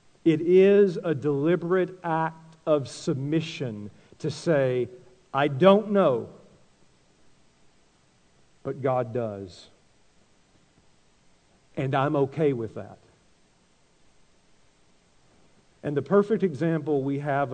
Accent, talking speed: American, 90 wpm